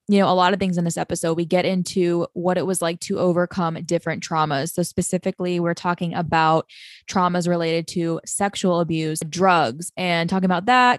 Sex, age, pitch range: female, 20-39, 165-185 Hz